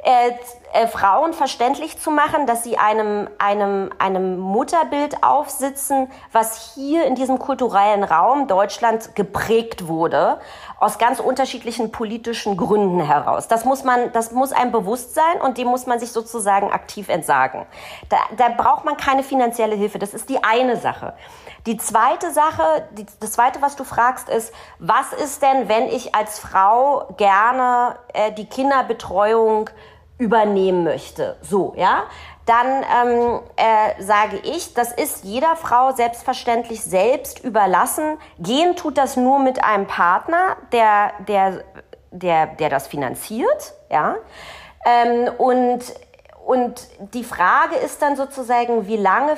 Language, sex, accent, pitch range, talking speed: German, female, German, 210-265 Hz, 140 wpm